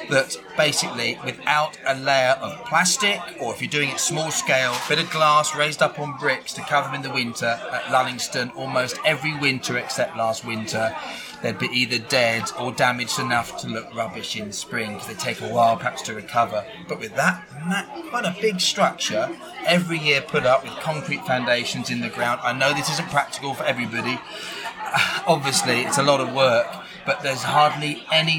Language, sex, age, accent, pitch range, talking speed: English, male, 30-49, British, 125-180 Hz, 190 wpm